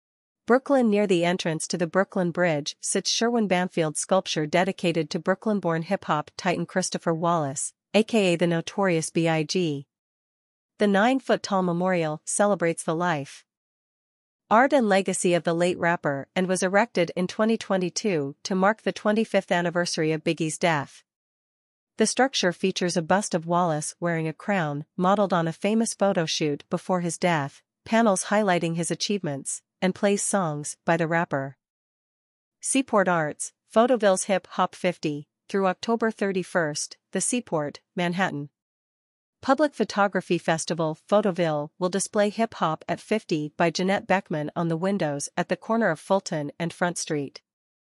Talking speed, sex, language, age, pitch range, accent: 145 wpm, female, English, 40-59, 165-200 Hz, American